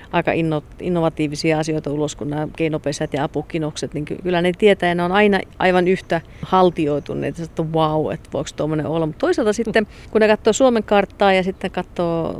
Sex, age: female, 40-59